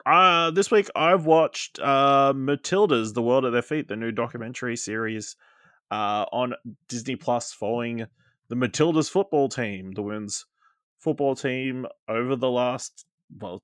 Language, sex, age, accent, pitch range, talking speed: English, male, 20-39, Australian, 105-140 Hz, 145 wpm